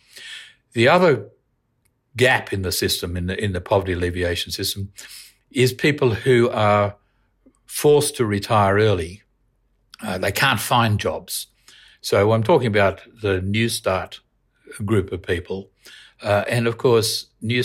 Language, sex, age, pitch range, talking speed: English, male, 60-79, 95-115 Hz, 140 wpm